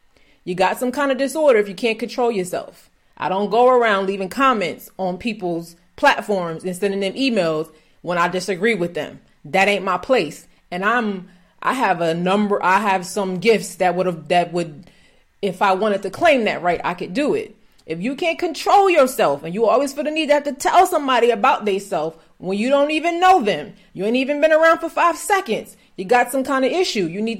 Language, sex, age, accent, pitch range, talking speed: English, female, 30-49, American, 185-285 Hz, 215 wpm